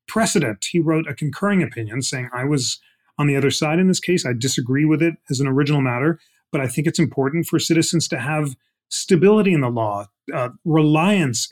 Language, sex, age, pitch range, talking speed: English, male, 30-49, 125-160 Hz, 205 wpm